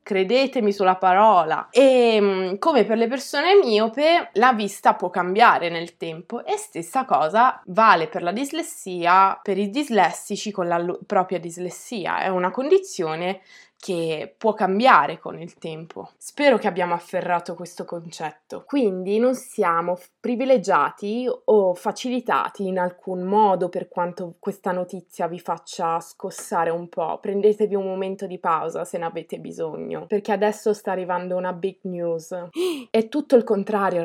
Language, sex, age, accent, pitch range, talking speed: Italian, female, 20-39, native, 180-235 Hz, 145 wpm